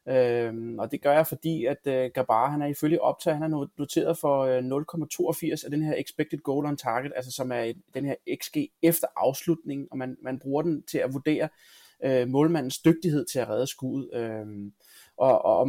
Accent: native